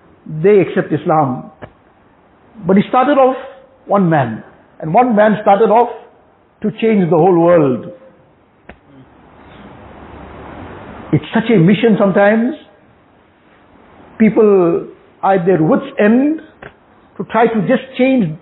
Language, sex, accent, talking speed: English, male, Indian, 115 wpm